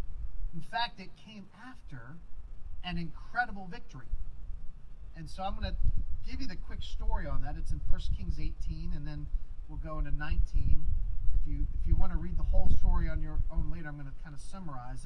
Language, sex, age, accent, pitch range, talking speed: English, male, 40-59, American, 115-185 Hz, 195 wpm